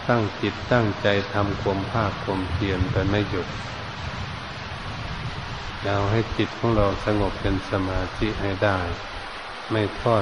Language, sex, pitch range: Thai, male, 100-115 Hz